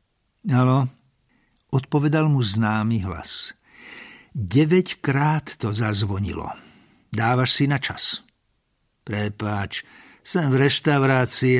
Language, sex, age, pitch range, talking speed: Slovak, male, 60-79, 110-145 Hz, 105 wpm